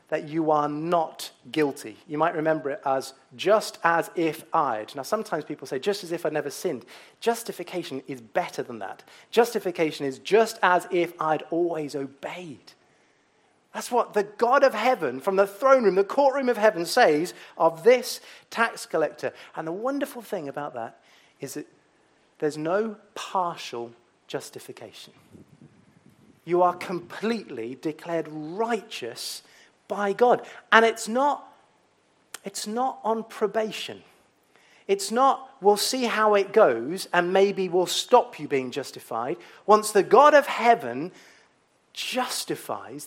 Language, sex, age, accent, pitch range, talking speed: English, male, 30-49, British, 160-230 Hz, 140 wpm